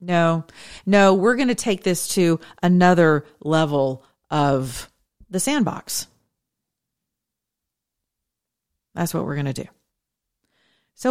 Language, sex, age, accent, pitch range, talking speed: English, female, 40-59, American, 140-175 Hz, 110 wpm